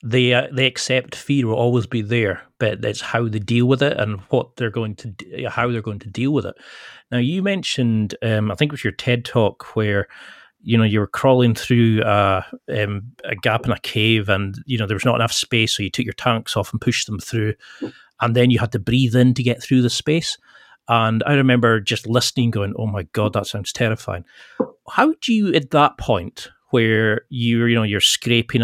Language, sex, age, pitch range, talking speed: English, male, 40-59, 110-130 Hz, 225 wpm